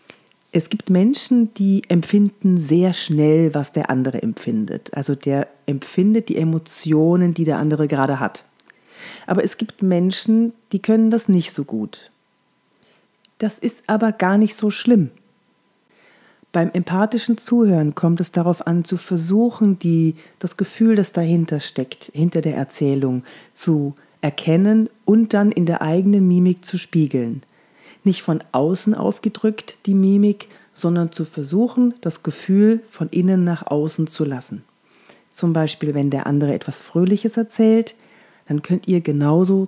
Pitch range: 155-205 Hz